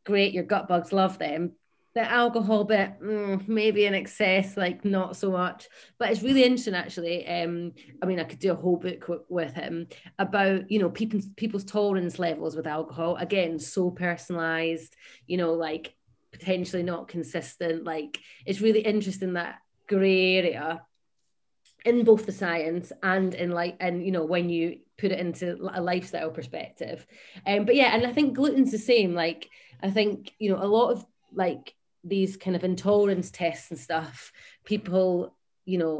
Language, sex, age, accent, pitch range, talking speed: English, female, 30-49, British, 170-200 Hz, 175 wpm